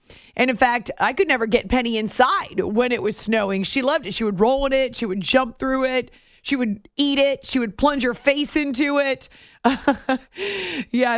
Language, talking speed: English, 205 wpm